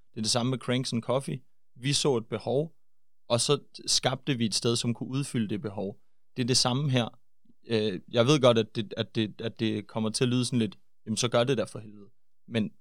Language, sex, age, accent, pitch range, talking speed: Danish, male, 30-49, native, 115-140 Hz, 235 wpm